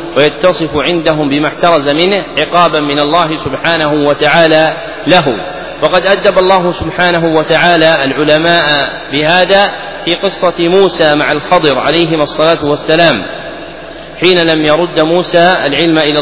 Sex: male